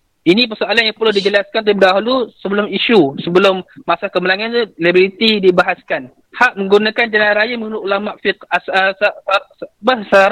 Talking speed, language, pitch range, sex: 175 wpm, Malay, 185-225 Hz, male